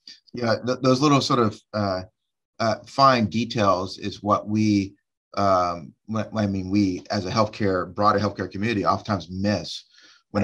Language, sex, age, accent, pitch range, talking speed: English, male, 30-49, American, 85-105 Hz, 150 wpm